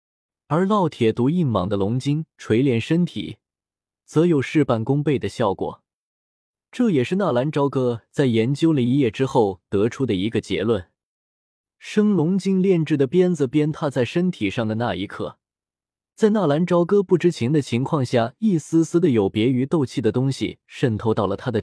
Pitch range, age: 110-160 Hz, 20-39